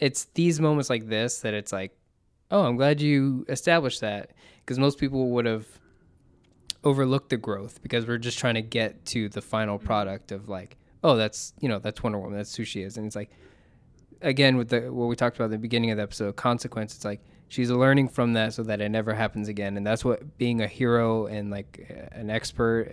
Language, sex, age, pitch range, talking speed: English, male, 20-39, 105-125 Hz, 220 wpm